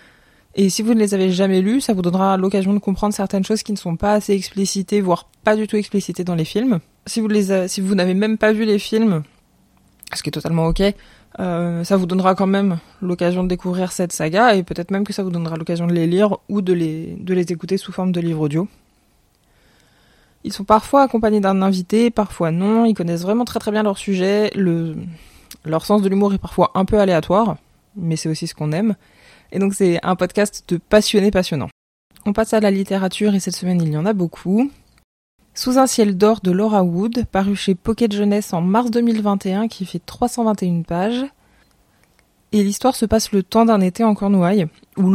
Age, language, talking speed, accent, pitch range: 20-39, French, 215 wpm, French, 180-215 Hz